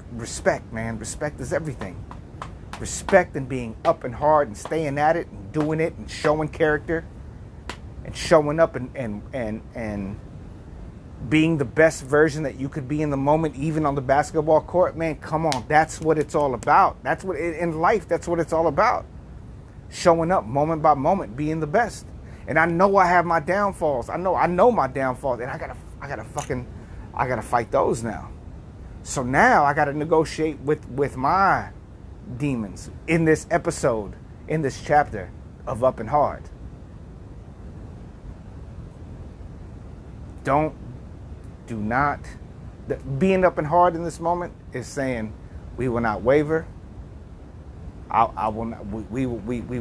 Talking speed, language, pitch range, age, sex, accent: 165 wpm, English, 110-155 Hz, 30-49, male, American